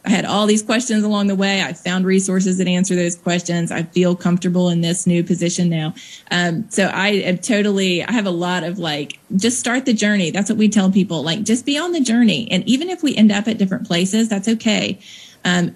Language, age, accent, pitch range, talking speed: English, 30-49, American, 175-205 Hz, 230 wpm